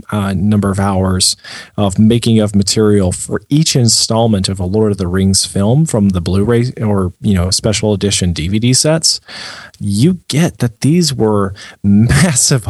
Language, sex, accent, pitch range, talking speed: English, male, American, 100-125 Hz, 160 wpm